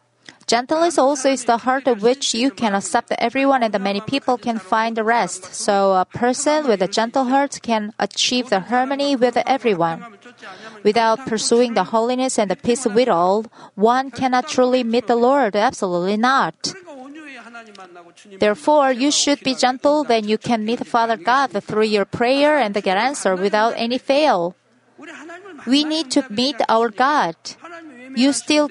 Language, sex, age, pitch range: Korean, female, 30-49, 205-265 Hz